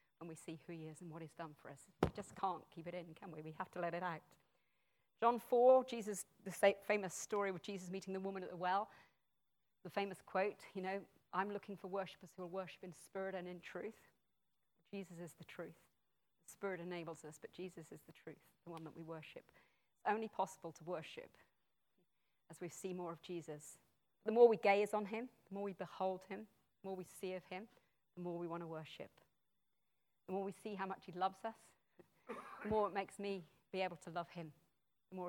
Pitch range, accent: 165-195 Hz, British